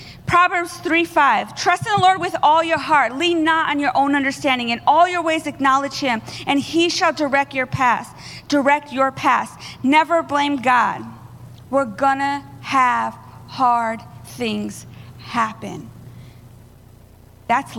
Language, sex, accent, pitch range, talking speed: English, female, American, 240-345 Hz, 140 wpm